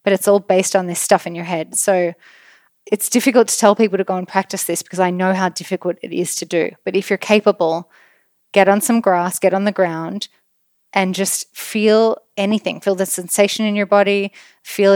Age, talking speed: 20-39, 215 wpm